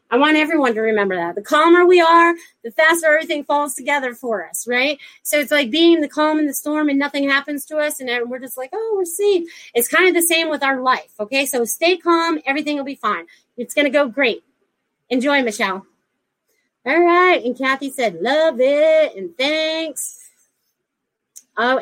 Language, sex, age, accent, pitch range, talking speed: English, female, 30-49, American, 250-315 Hz, 200 wpm